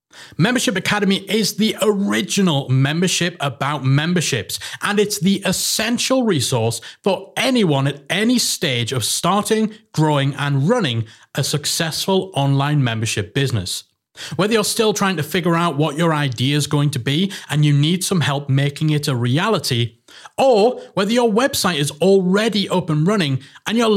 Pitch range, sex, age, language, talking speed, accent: 140-195 Hz, male, 30-49, English, 155 wpm, British